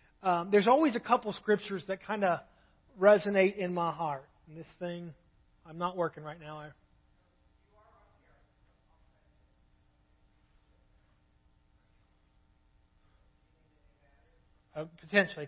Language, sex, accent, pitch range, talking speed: English, male, American, 175-225 Hz, 95 wpm